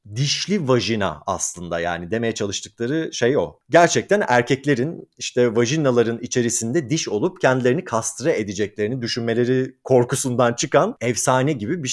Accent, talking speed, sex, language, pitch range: native, 120 wpm, male, Turkish, 105-135 Hz